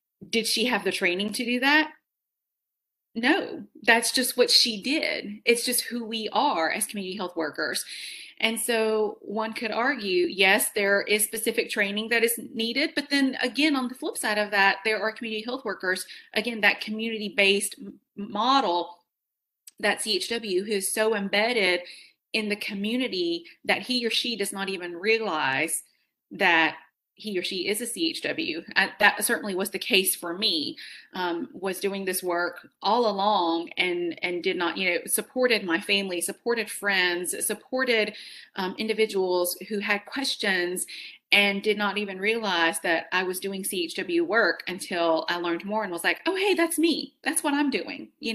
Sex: female